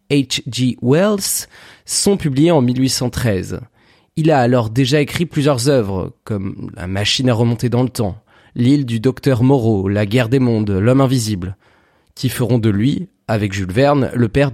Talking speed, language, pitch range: 170 wpm, French, 110-145 Hz